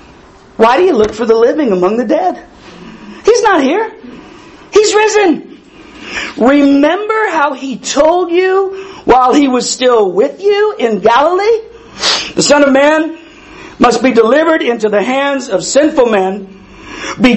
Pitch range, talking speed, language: 205-315 Hz, 145 wpm, English